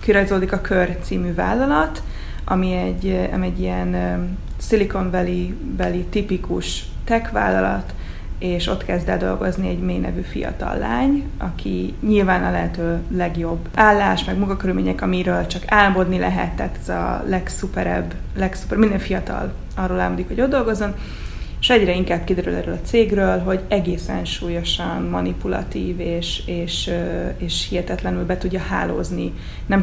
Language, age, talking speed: Hungarian, 20-39, 135 wpm